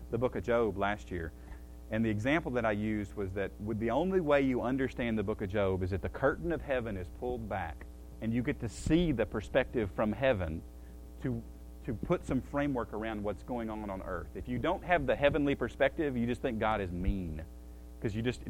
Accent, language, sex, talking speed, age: American, English, male, 215 wpm, 40-59